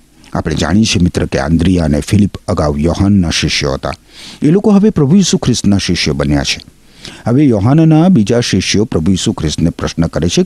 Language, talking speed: Gujarati, 180 wpm